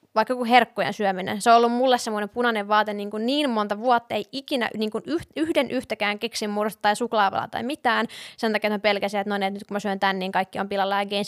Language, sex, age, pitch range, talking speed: Finnish, female, 20-39, 205-230 Hz, 240 wpm